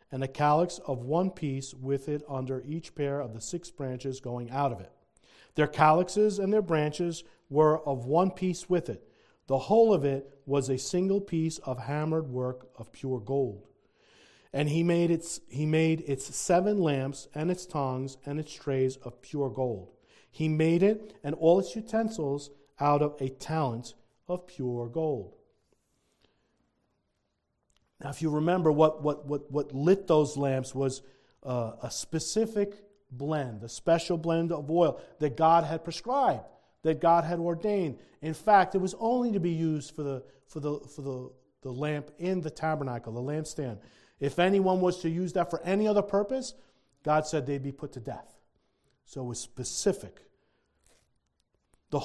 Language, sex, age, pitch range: English, male, 40-59, 135-170 Hz